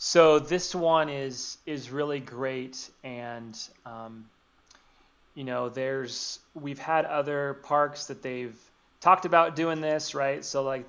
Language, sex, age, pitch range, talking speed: English, male, 30-49, 125-145 Hz, 140 wpm